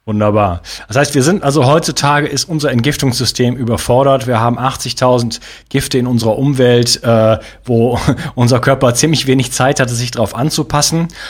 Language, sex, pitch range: German, male, 110-140 Hz